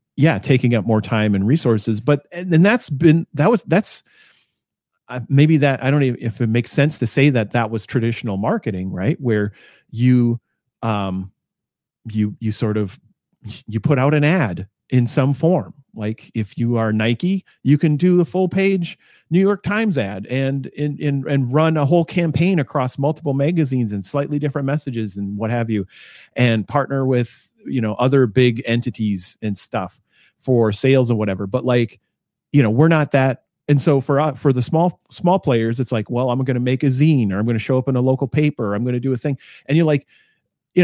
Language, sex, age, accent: English, male, 40-59, American